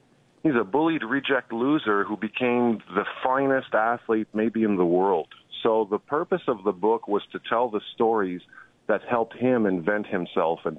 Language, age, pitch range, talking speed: English, 40-59, 100-115 Hz, 170 wpm